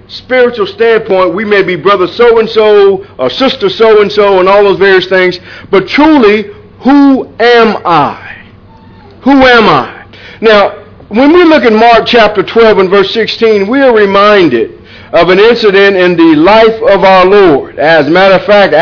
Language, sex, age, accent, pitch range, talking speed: English, male, 50-69, American, 155-225 Hz, 165 wpm